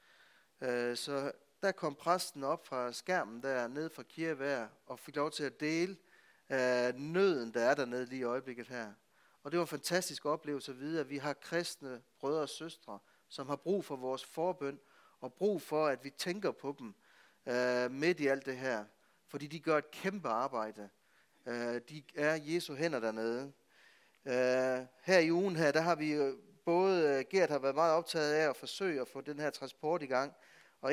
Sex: male